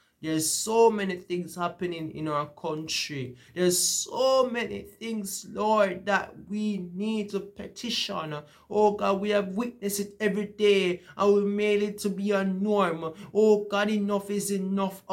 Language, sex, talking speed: English, male, 155 wpm